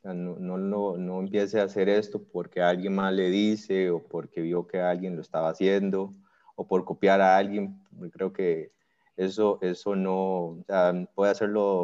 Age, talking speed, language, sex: 30-49, 170 wpm, Spanish, male